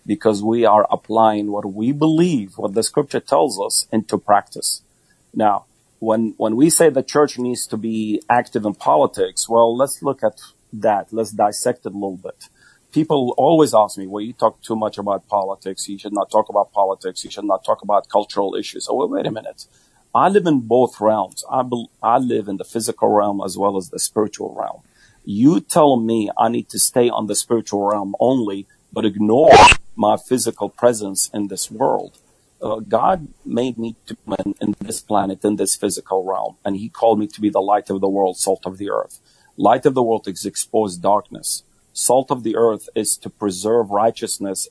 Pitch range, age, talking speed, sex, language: 105-125 Hz, 40-59, 195 wpm, male, English